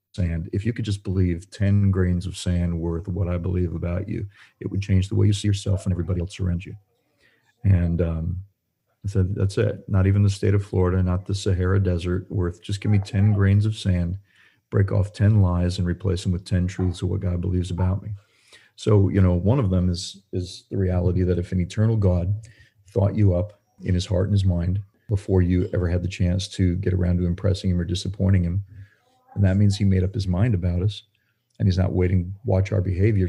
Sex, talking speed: male, 225 wpm